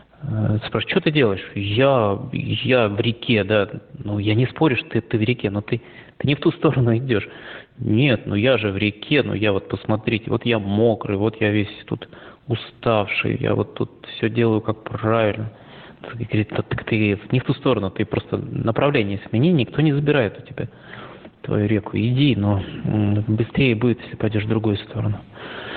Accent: native